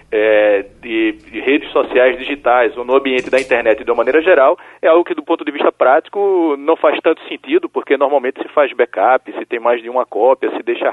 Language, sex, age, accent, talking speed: Portuguese, male, 40-59, Brazilian, 220 wpm